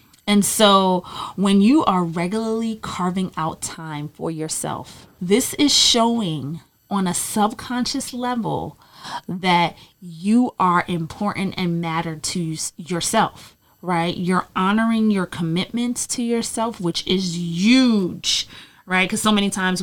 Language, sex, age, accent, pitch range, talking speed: English, female, 30-49, American, 170-210 Hz, 125 wpm